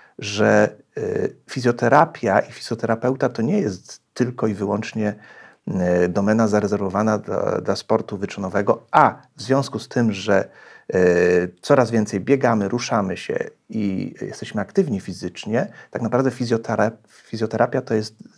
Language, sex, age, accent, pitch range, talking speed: Polish, male, 40-59, native, 100-130 Hz, 120 wpm